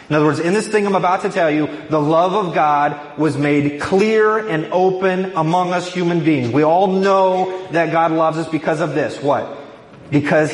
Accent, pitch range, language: American, 125-170 Hz, English